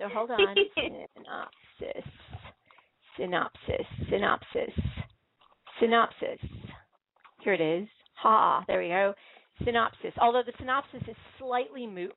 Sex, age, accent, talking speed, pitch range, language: female, 40-59, American, 105 wpm, 190-260 Hz, English